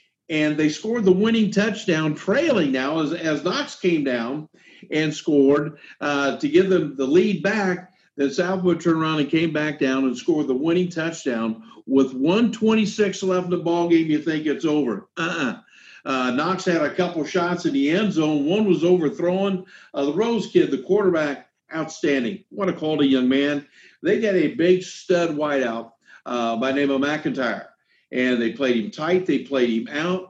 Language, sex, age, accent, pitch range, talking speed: English, male, 50-69, American, 140-185 Hz, 185 wpm